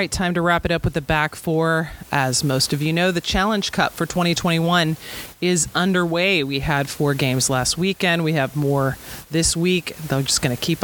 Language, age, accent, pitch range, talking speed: English, 30-49, American, 150-180 Hz, 205 wpm